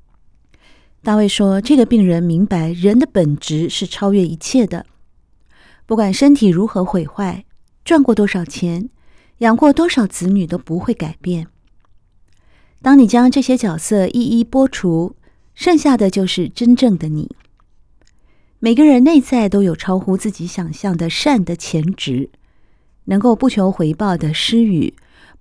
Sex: female